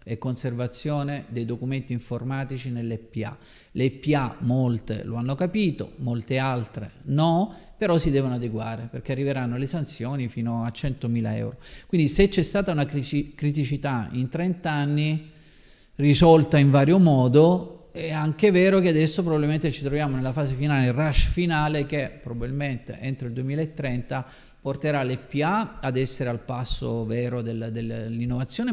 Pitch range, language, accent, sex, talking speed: 120-150 Hz, Italian, native, male, 150 wpm